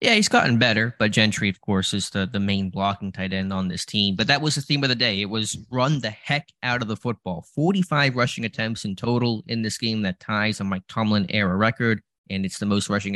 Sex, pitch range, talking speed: male, 100-120 Hz, 245 wpm